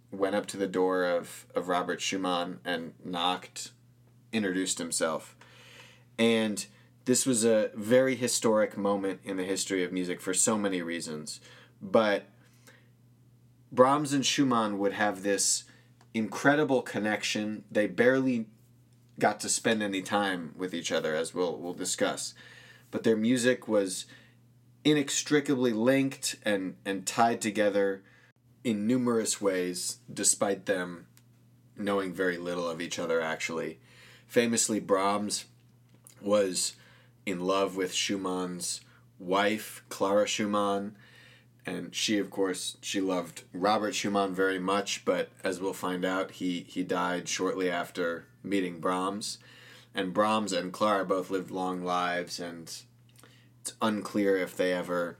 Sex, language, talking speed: male, English, 130 wpm